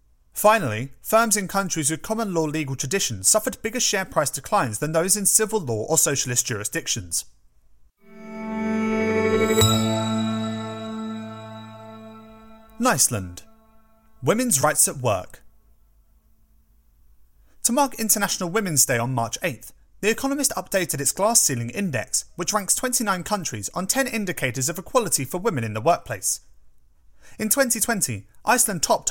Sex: male